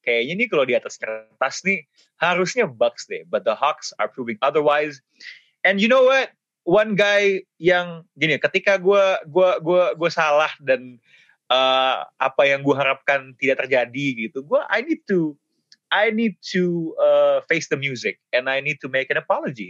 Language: Indonesian